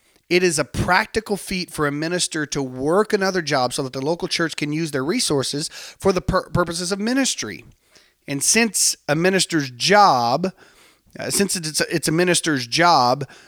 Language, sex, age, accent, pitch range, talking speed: English, male, 30-49, American, 135-180 Hz, 170 wpm